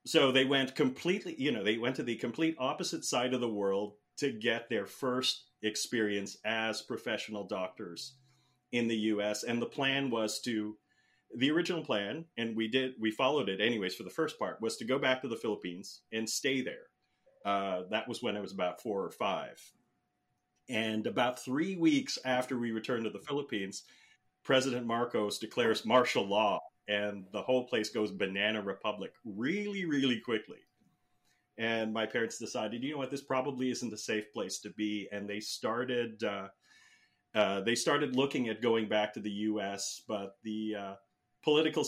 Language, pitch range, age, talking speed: English, 105-130 Hz, 40-59, 180 wpm